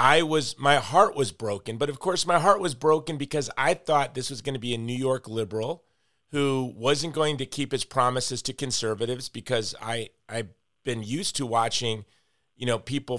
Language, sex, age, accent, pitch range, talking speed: English, male, 40-59, American, 120-155 Hz, 200 wpm